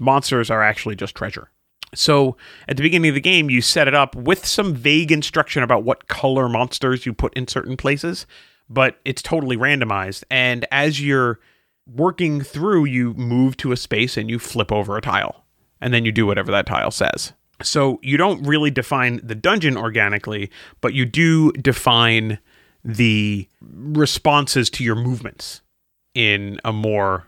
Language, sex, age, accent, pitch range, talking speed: English, male, 30-49, American, 115-145 Hz, 170 wpm